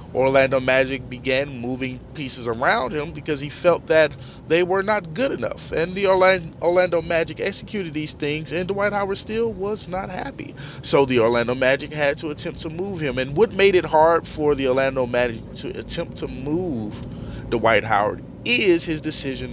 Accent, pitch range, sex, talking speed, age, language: American, 130-170 Hz, male, 180 wpm, 30-49, English